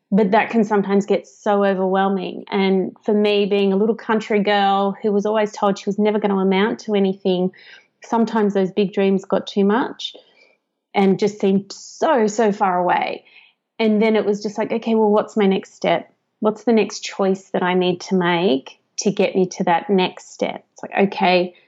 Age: 30-49